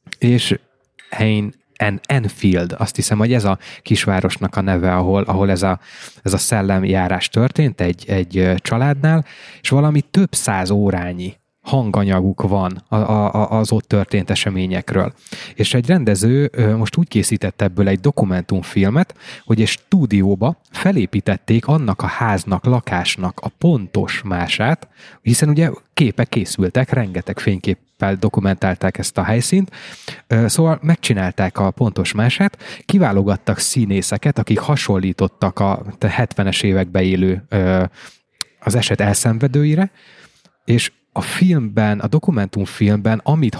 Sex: male